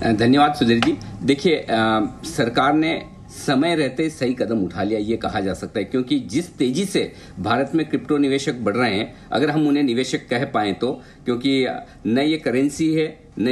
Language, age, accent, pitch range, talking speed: English, 50-69, Indian, 125-155 Hz, 180 wpm